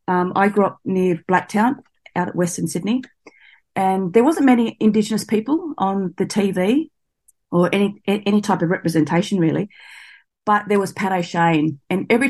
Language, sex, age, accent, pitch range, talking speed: English, female, 30-49, Australian, 170-210 Hz, 160 wpm